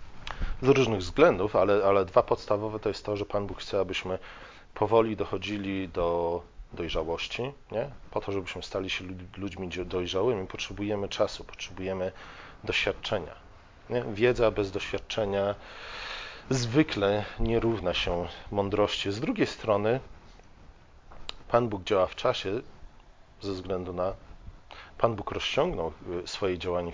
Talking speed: 125 wpm